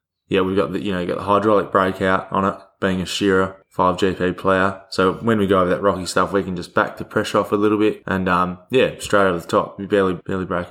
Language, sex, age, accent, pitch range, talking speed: English, male, 20-39, Australian, 95-110 Hz, 265 wpm